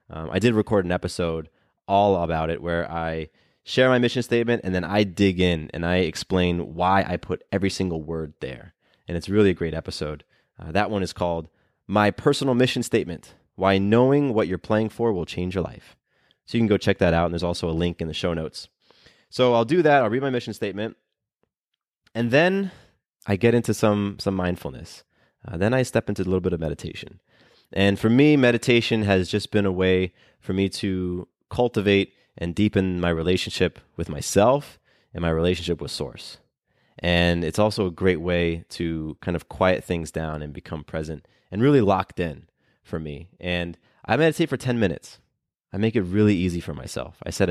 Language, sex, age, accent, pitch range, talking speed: English, male, 20-39, American, 85-110 Hz, 200 wpm